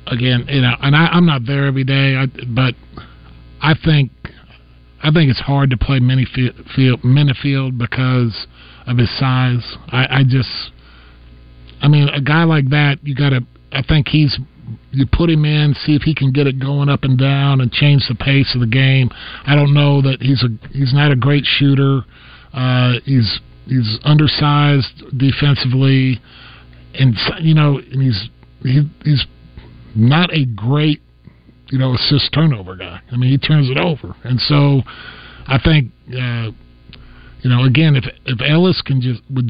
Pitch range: 115-145 Hz